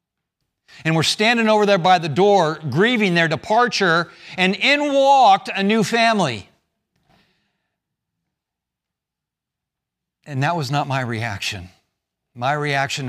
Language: English